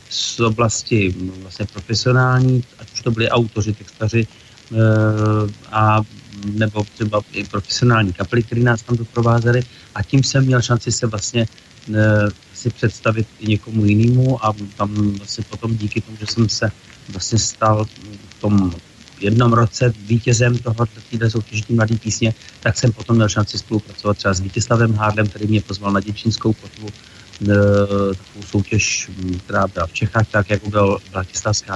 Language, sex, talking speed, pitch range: Slovak, male, 150 wpm, 105-120 Hz